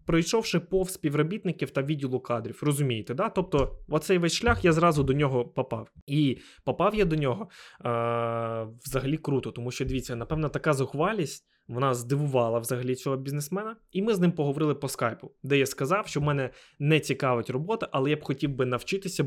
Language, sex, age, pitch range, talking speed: Ukrainian, male, 20-39, 125-165 Hz, 180 wpm